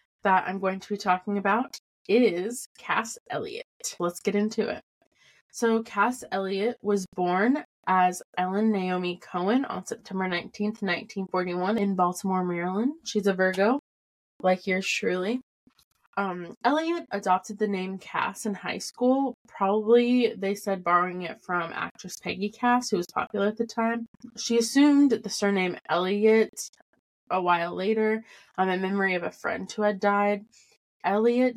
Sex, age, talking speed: female, 20-39, 150 wpm